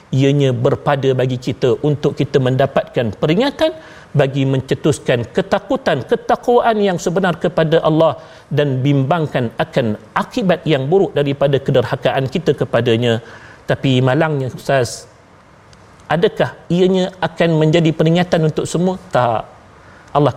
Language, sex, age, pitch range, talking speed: Malayalam, male, 40-59, 135-190 Hz, 110 wpm